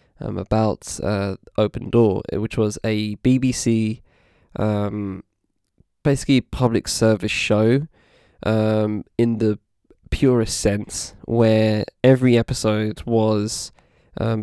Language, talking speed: English, 100 wpm